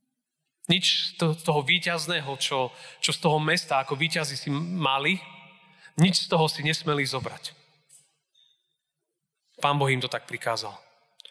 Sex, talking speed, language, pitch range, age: male, 135 wpm, Slovak, 145-175 Hz, 30-49